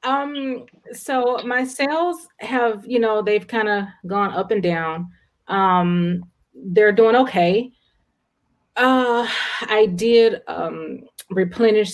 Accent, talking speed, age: American, 115 wpm, 30-49